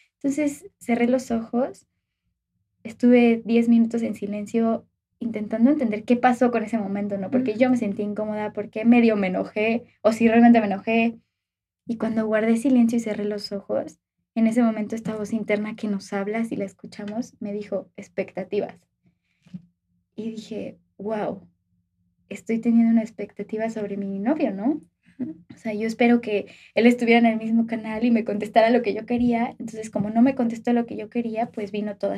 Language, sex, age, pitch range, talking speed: Spanish, female, 20-39, 205-240 Hz, 180 wpm